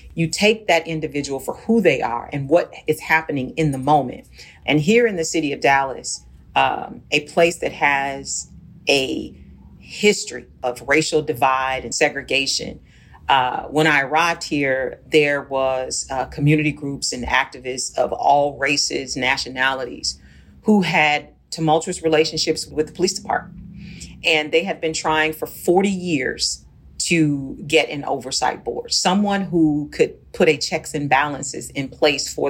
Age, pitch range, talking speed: 40-59, 135-160 Hz, 150 wpm